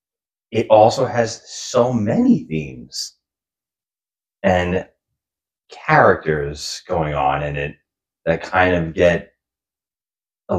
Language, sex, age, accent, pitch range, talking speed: English, male, 30-49, American, 80-100 Hz, 95 wpm